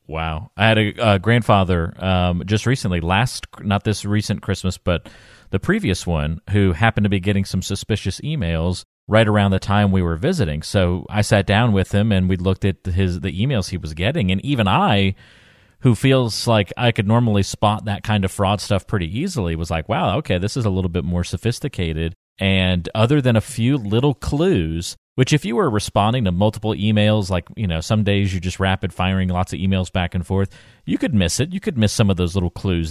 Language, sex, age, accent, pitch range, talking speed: English, male, 40-59, American, 90-110 Hz, 215 wpm